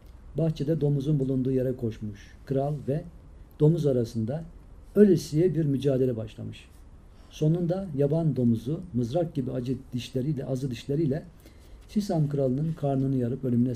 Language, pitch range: Turkish, 105-165 Hz